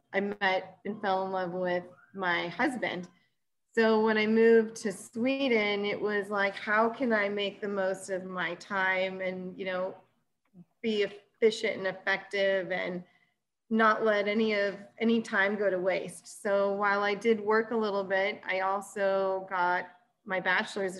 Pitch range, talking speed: 185-210 Hz, 165 wpm